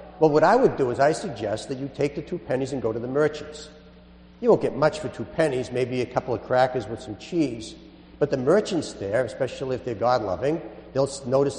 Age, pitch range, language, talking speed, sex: 50-69, 105-160 Hz, English, 230 wpm, male